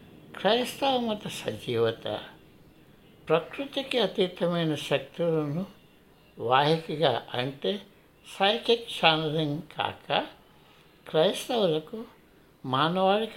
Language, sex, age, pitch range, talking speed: Telugu, male, 60-79, 150-200 Hz, 55 wpm